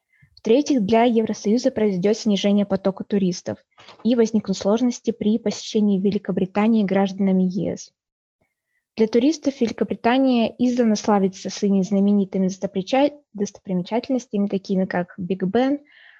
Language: Russian